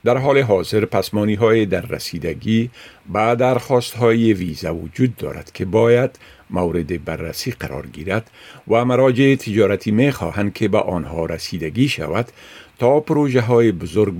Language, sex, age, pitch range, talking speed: Persian, male, 50-69, 90-120 Hz, 135 wpm